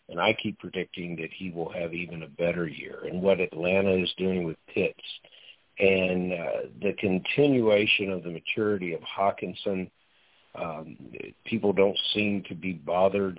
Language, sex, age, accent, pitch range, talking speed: English, male, 50-69, American, 90-115 Hz, 155 wpm